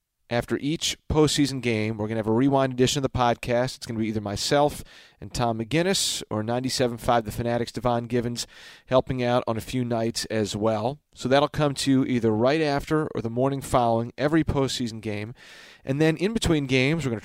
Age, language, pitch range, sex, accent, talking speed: 40-59, English, 115-150 Hz, male, American, 210 wpm